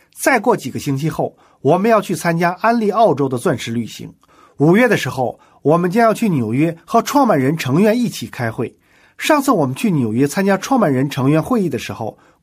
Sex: male